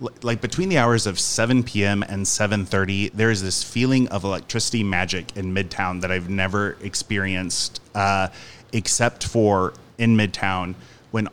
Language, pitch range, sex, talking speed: English, 95-115 Hz, male, 150 wpm